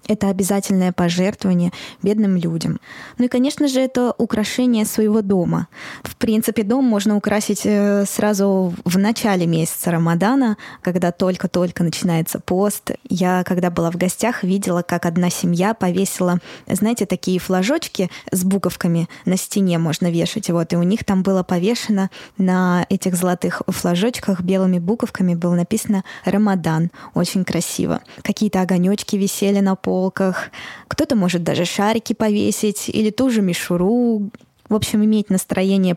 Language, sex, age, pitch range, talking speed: Russian, female, 20-39, 180-225 Hz, 135 wpm